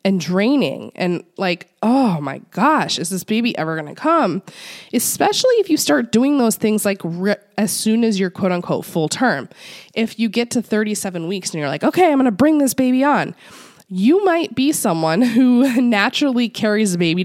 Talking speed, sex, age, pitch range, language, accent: 200 wpm, female, 20-39, 185-250 Hz, English, American